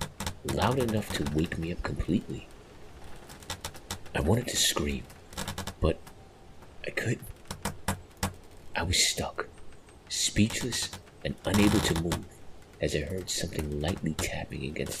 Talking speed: 115 wpm